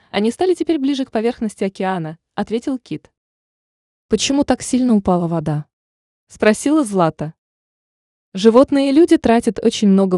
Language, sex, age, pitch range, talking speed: Russian, female, 20-39, 170-245 Hz, 140 wpm